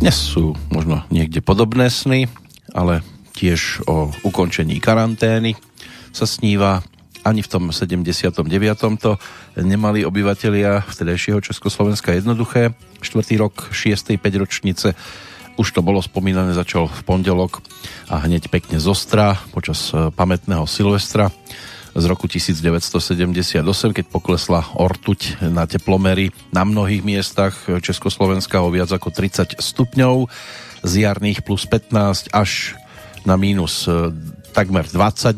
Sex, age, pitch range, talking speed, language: male, 40-59, 85-105 Hz, 115 wpm, Slovak